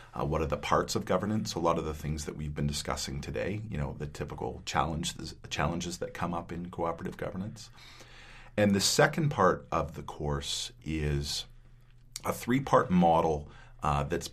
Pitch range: 75-95 Hz